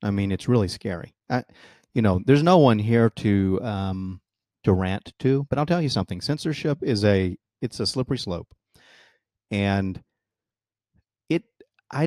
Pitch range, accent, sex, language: 100-125 Hz, American, male, English